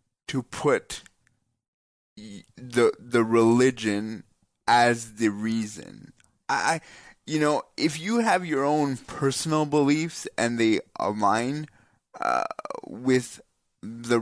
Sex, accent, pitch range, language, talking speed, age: male, American, 115-145 Hz, English, 100 wpm, 20-39